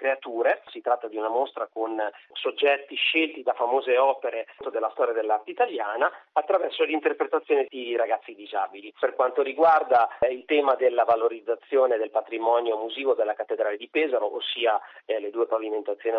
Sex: male